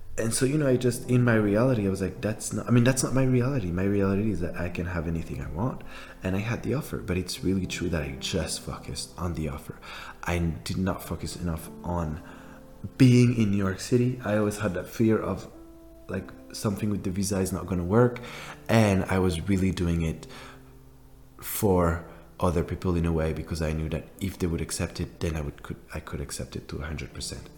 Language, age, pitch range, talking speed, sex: English, 20-39, 85-105 Hz, 225 wpm, male